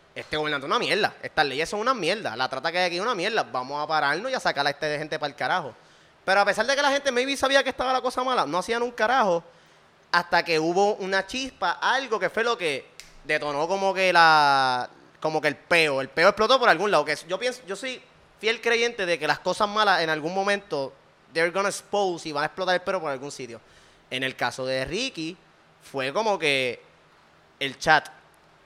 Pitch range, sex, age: 160-235 Hz, male, 20-39